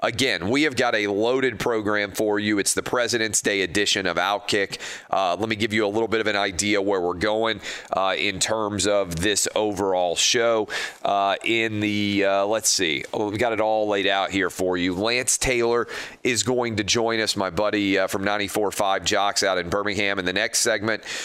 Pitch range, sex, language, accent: 95-110 Hz, male, English, American